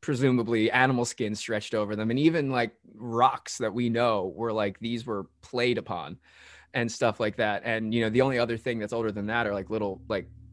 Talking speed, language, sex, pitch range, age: 215 wpm, English, male, 110-145 Hz, 20-39